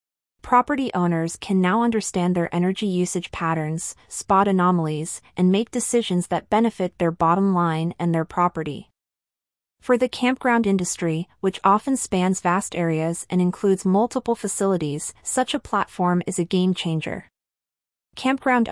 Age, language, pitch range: 30-49, English, 175-210 Hz